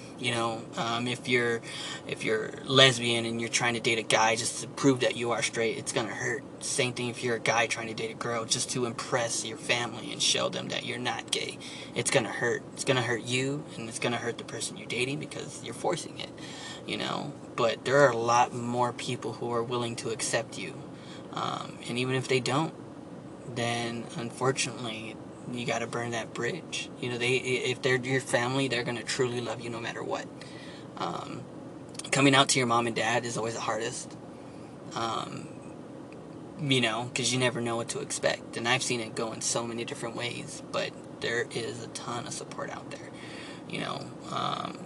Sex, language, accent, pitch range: male, English, American, 115-135 Hz